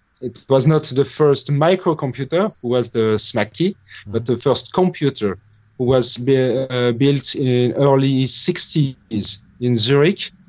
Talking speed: 130 wpm